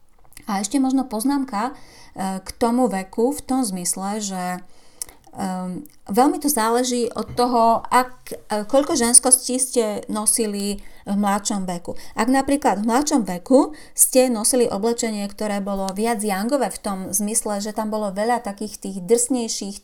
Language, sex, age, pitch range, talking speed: Slovak, female, 30-49, 195-240 Hz, 140 wpm